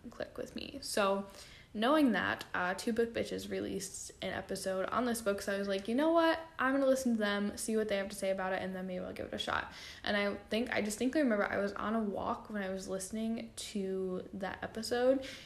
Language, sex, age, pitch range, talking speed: English, female, 10-29, 190-225 Hz, 240 wpm